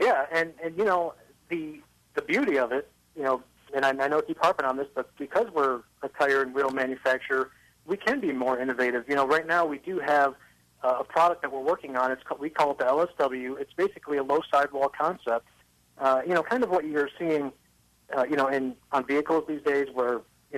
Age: 40-59